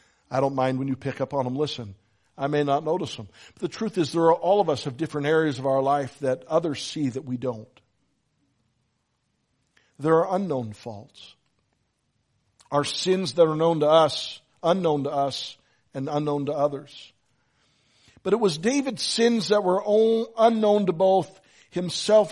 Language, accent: English, American